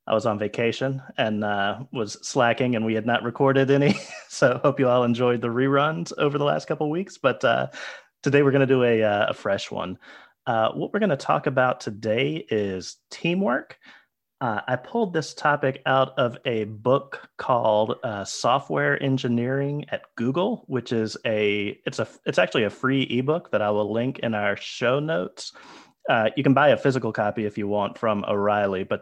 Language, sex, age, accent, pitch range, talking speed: English, male, 30-49, American, 105-135 Hz, 195 wpm